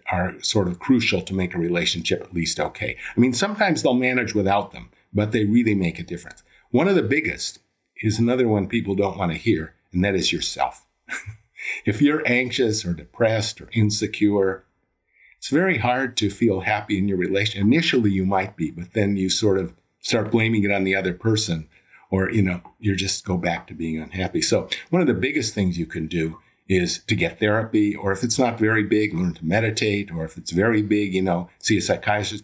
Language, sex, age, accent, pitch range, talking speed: English, male, 50-69, American, 90-110 Hz, 210 wpm